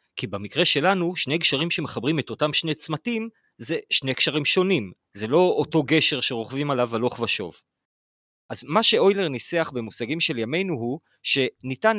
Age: 40-59